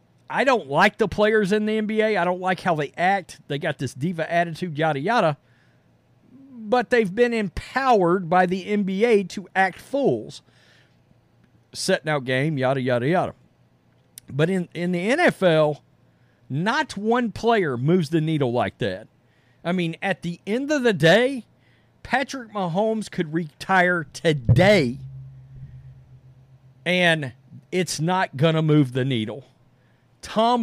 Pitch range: 135-210 Hz